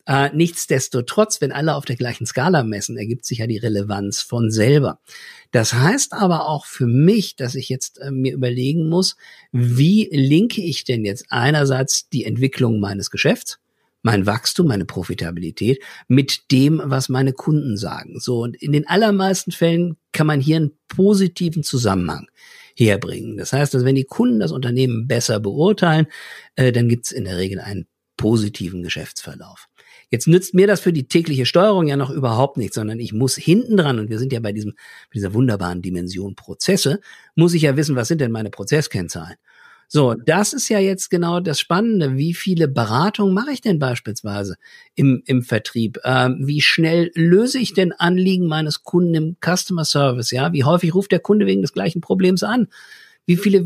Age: 50-69